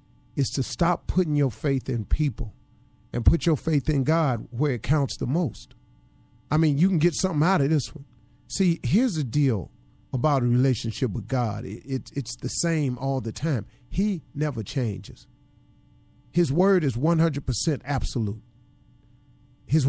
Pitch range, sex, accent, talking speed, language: 125-180 Hz, male, American, 160 wpm, English